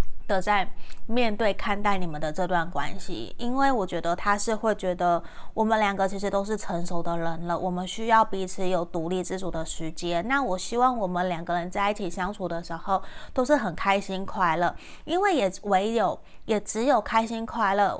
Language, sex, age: Chinese, female, 20-39